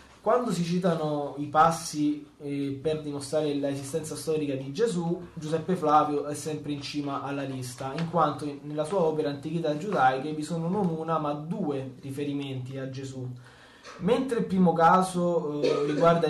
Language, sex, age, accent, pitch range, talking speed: Italian, male, 20-39, native, 140-170 Hz, 155 wpm